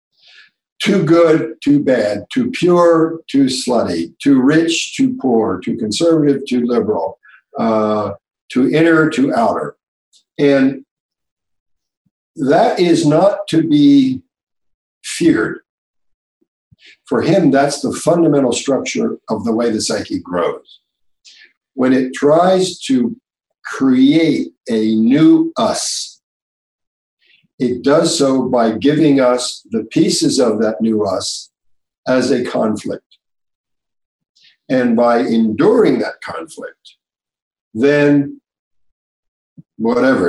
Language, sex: English, male